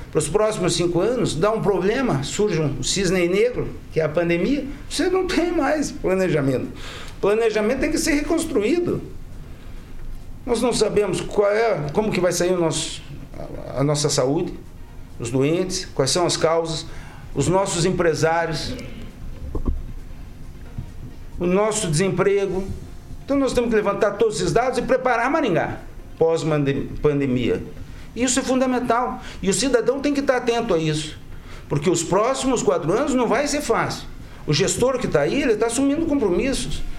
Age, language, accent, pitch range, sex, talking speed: 60-79, Portuguese, Brazilian, 155-235 Hz, male, 155 wpm